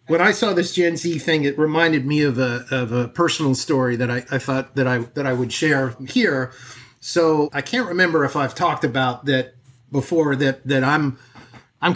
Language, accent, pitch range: English, American, 130-150 Hz